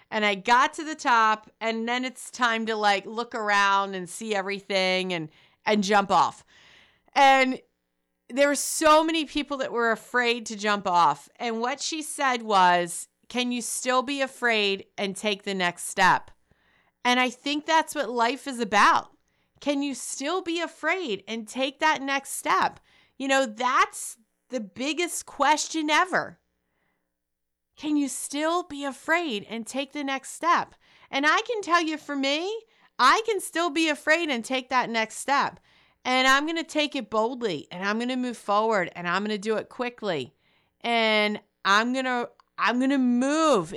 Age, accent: 40-59, American